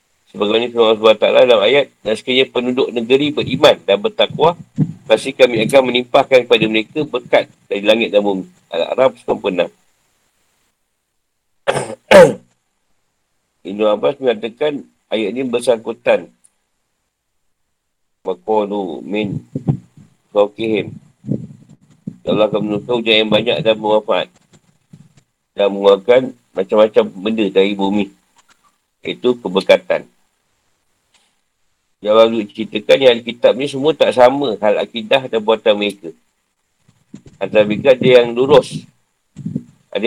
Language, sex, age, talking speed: Malay, male, 50-69, 105 wpm